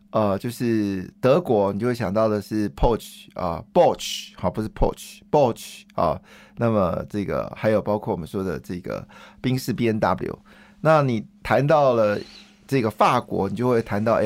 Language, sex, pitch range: Chinese, male, 105-130 Hz